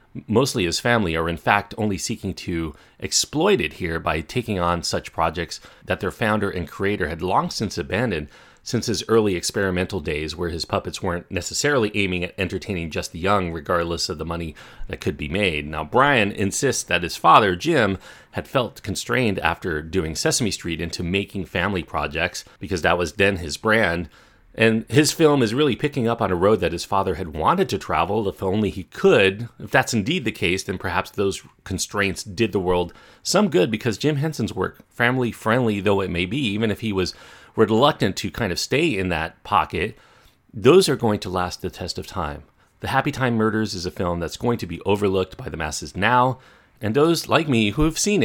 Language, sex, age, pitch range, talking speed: English, male, 40-59, 90-115 Hz, 205 wpm